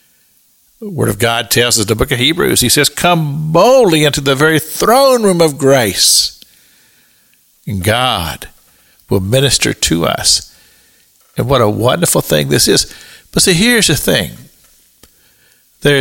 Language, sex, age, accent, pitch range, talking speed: English, male, 60-79, American, 110-155 Hz, 155 wpm